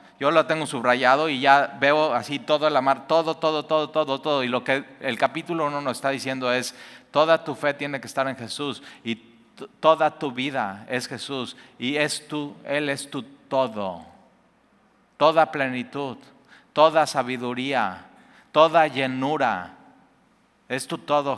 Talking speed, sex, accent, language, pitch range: 160 wpm, male, Mexican, Spanish, 130-160 Hz